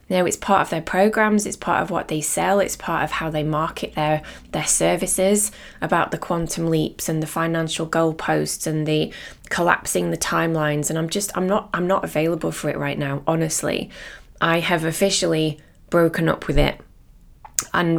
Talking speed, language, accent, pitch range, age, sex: 185 wpm, English, British, 160-190 Hz, 20-39, female